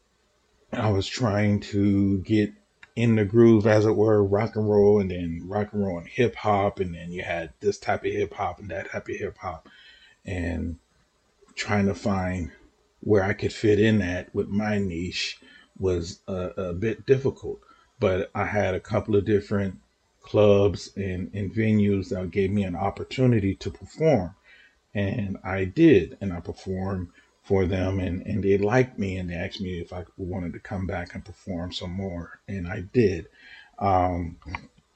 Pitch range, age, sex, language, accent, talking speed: 95-110 Hz, 40-59, male, English, American, 180 wpm